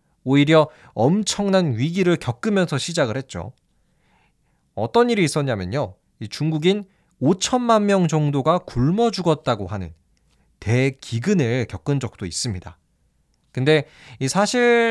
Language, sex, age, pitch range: Korean, male, 20-39, 115-175 Hz